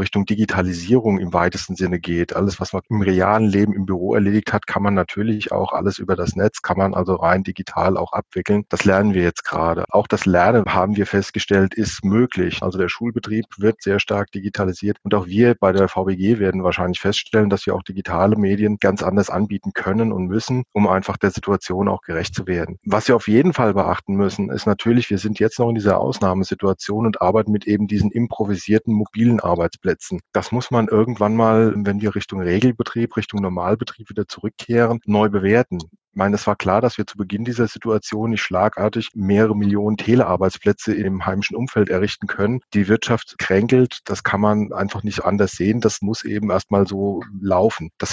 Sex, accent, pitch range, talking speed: male, German, 95-110 Hz, 195 wpm